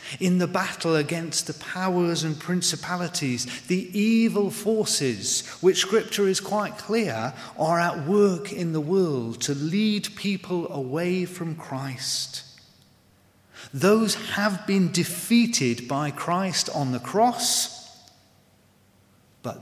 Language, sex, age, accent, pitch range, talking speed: English, male, 30-49, British, 135-180 Hz, 115 wpm